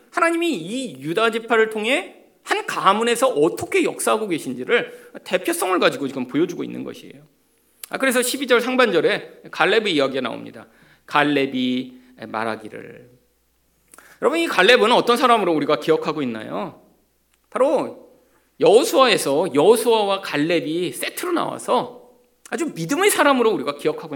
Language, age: Korean, 40-59